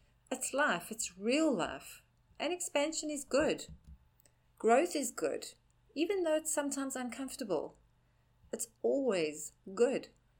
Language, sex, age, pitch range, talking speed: English, female, 40-59, 195-265 Hz, 115 wpm